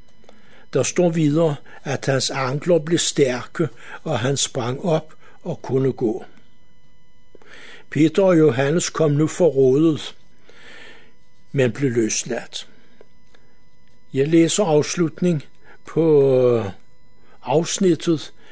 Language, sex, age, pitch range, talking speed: Danish, male, 60-79, 135-165 Hz, 95 wpm